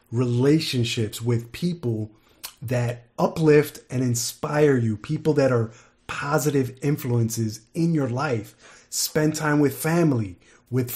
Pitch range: 120-155 Hz